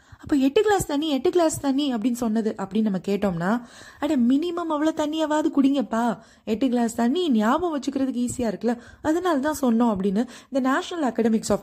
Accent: native